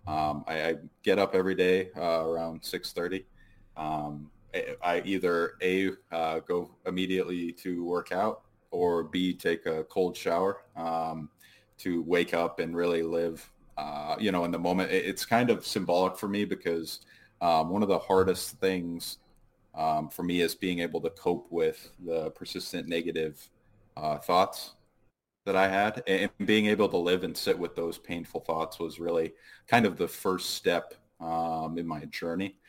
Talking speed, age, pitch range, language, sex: 170 wpm, 20-39, 80-90 Hz, English, male